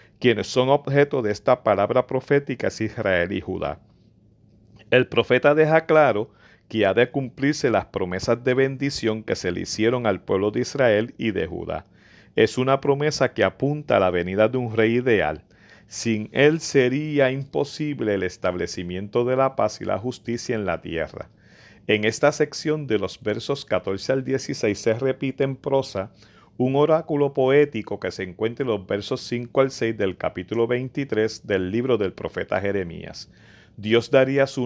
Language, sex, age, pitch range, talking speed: Spanish, male, 40-59, 105-135 Hz, 170 wpm